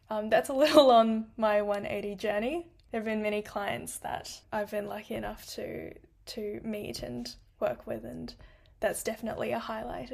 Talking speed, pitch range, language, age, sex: 170 wpm, 205-230 Hz, English, 10-29, female